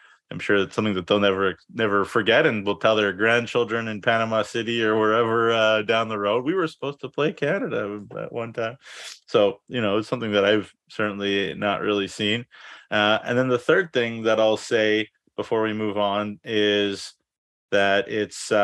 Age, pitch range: 20-39, 100-115 Hz